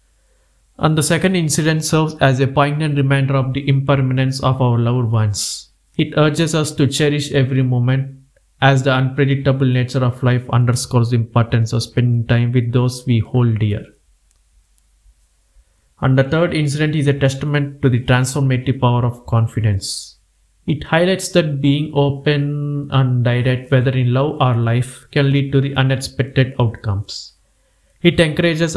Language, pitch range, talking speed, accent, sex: Telugu, 120-140 Hz, 150 wpm, native, male